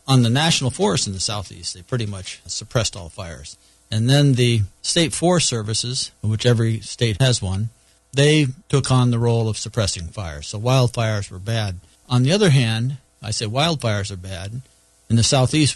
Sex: male